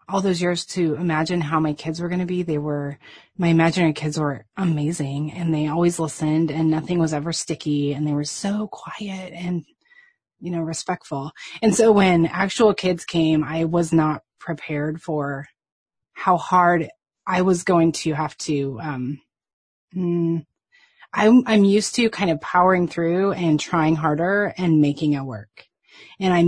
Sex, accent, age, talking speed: female, American, 30-49, 170 wpm